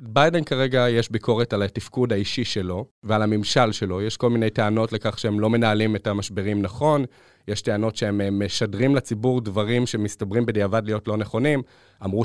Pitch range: 110-135 Hz